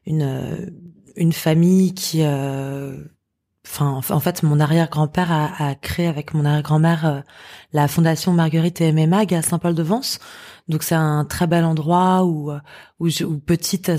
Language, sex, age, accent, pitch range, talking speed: French, female, 20-39, French, 150-175 Hz, 180 wpm